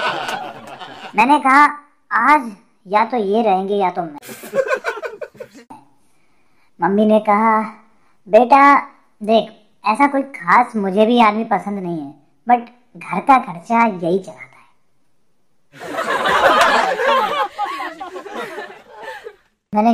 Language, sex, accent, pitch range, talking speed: Hindi, male, native, 185-255 Hz, 95 wpm